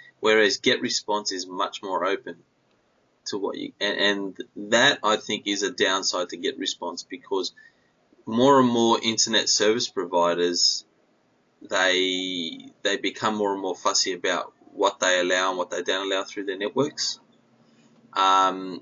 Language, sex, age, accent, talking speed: English, male, 20-39, Australian, 145 wpm